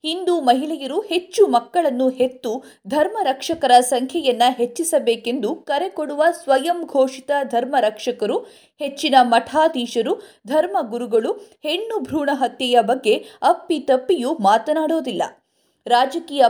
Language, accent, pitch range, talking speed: Kannada, native, 250-345 Hz, 85 wpm